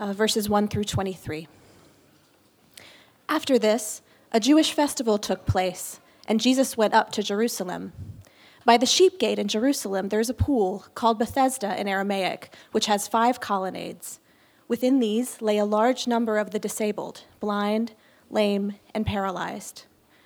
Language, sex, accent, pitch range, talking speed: English, female, American, 200-245 Hz, 145 wpm